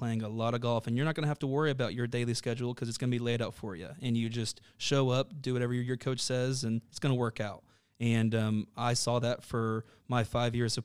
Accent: American